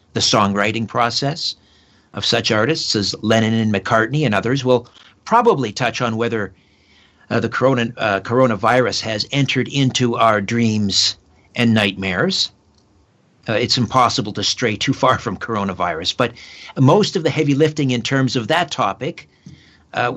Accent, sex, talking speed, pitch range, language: American, male, 145 wpm, 105-135 Hz, English